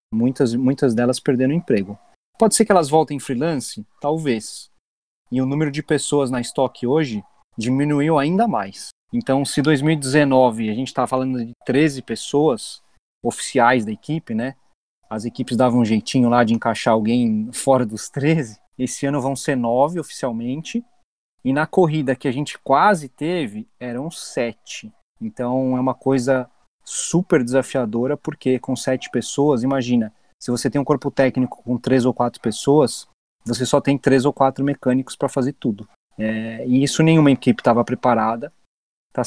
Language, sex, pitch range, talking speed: Portuguese, male, 120-145 Hz, 165 wpm